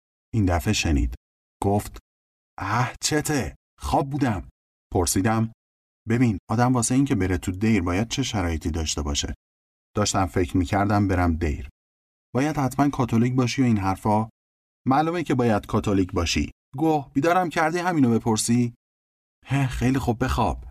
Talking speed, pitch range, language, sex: 140 wpm, 80-120 Hz, Persian, male